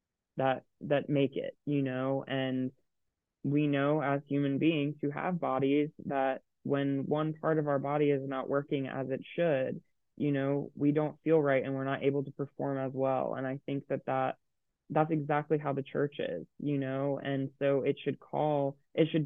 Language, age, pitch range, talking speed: English, 20-39, 130-145 Hz, 195 wpm